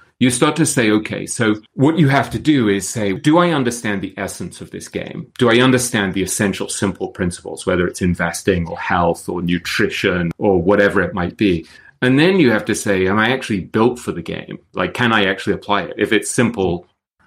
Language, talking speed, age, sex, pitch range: English, 215 wpm, 30-49, male, 95-125 Hz